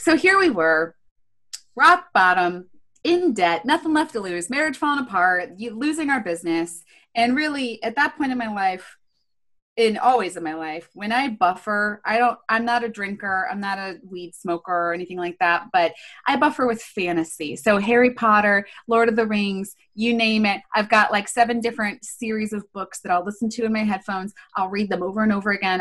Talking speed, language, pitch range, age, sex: 200 wpm, English, 185-255 Hz, 20-39, female